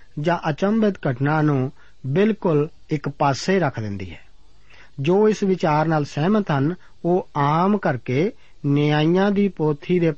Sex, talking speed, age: male, 135 wpm, 50-69